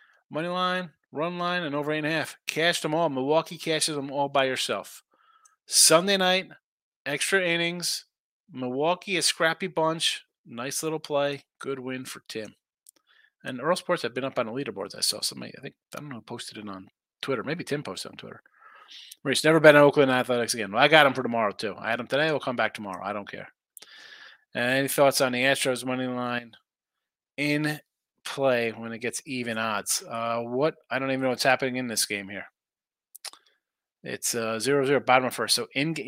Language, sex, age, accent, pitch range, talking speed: English, male, 30-49, American, 120-160 Hz, 200 wpm